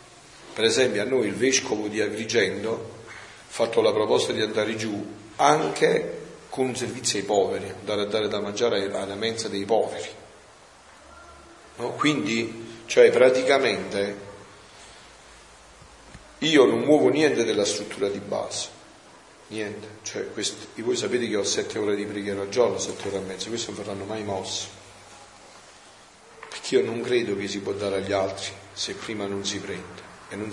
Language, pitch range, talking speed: Italian, 100-125 Hz, 155 wpm